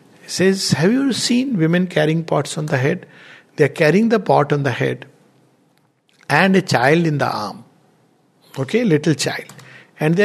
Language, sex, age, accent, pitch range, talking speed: English, male, 60-79, Indian, 145-185 Hz, 170 wpm